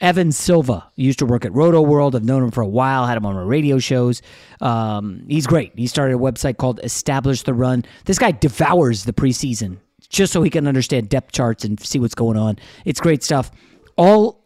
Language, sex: English, male